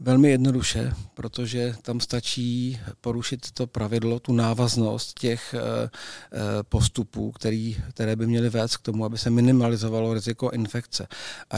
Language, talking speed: Czech, 125 wpm